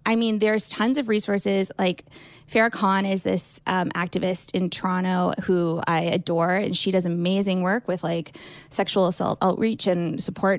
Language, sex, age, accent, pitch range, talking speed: English, female, 20-39, American, 180-210 Hz, 170 wpm